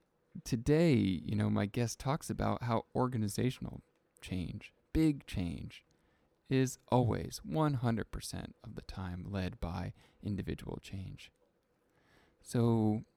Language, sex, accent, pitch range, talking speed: English, male, American, 100-125 Hz, 105 wpm